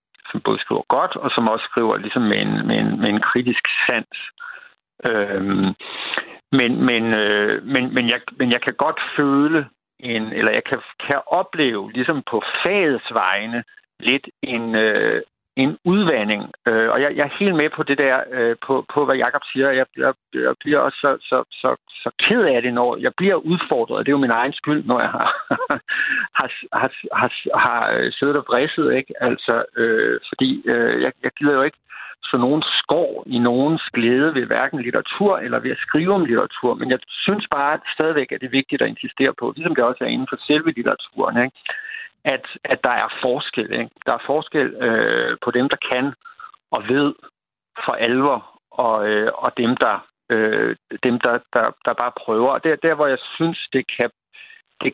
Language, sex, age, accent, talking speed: Danish, male, 60-79, native, 195 wpm